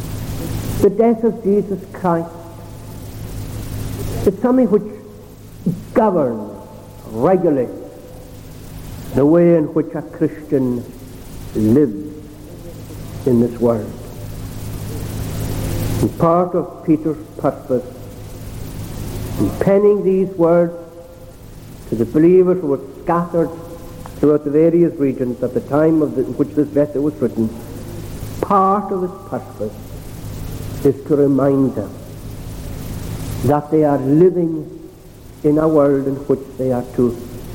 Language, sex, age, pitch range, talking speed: English, male, 60-79, 115-155 Hz, 110 wpm